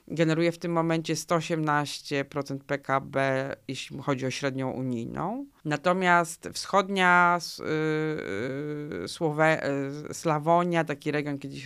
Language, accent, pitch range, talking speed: Polish, native, 135-160 Hz, 85 wpm